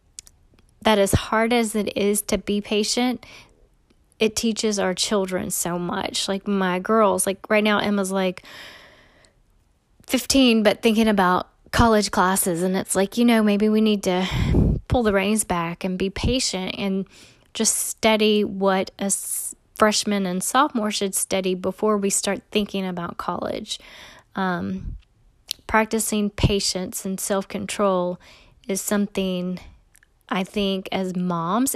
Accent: American